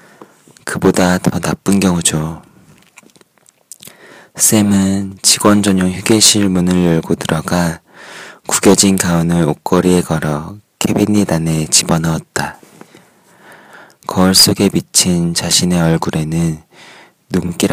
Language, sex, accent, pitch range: Korean, male, native, 80-95 Hz